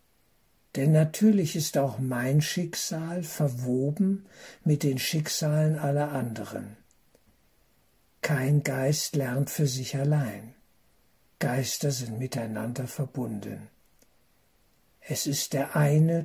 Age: 60-79